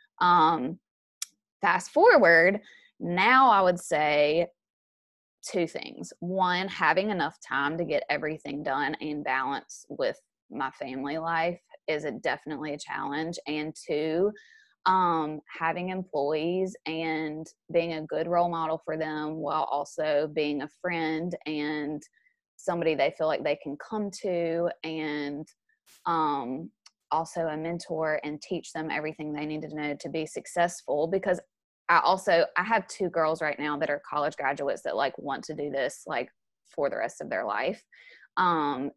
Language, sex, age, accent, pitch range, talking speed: English, female, 20-39, American, 145-170 Hz, 150 wpm